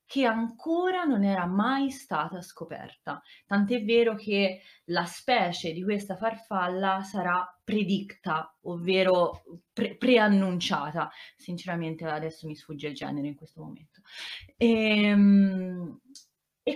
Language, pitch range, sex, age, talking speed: Italian, 165-230 Hz, female, 30-49, 105 wpm